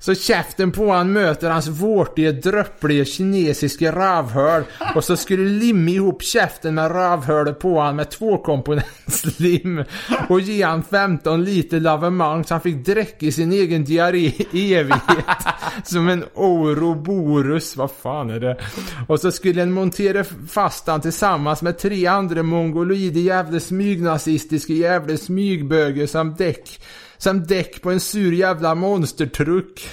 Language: Swedish